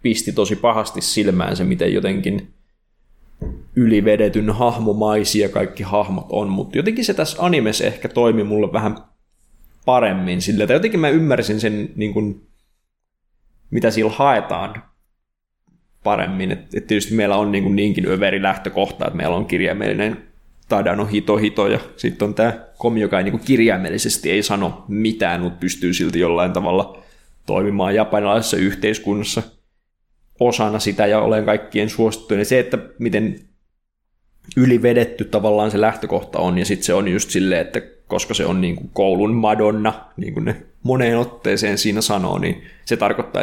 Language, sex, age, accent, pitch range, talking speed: Finnish, male, 20-39, native, 100-115 Hz, 150 wpm